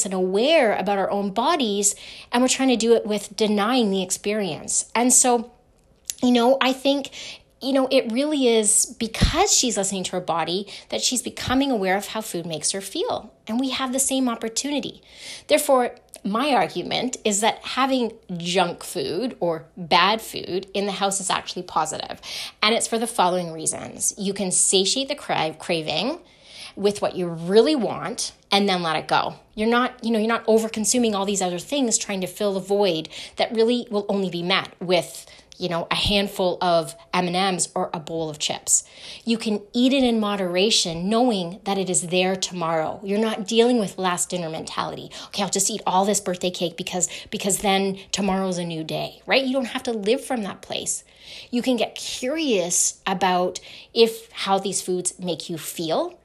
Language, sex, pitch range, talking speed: English, female, 185-240 Hz, 190 wpm